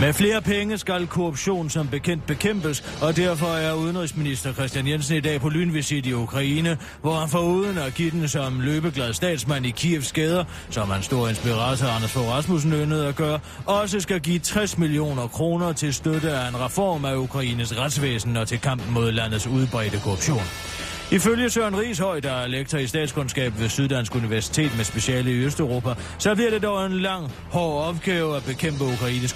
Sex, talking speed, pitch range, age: male, 180 wpm, 120-160 Hz, 30-49